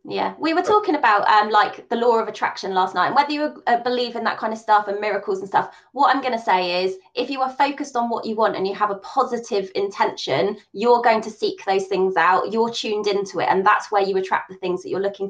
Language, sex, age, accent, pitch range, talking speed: English, female, 20-39, British, 195-245 Hz, 265 wpm